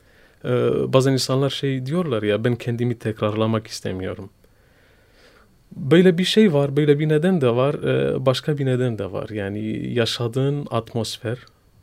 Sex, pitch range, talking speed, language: male, 105-130 Hz, 130 wpm, Turkish